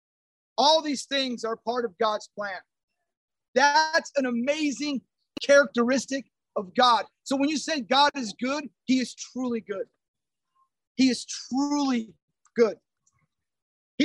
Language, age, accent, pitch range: English, 30-49, American, 230-280 Hz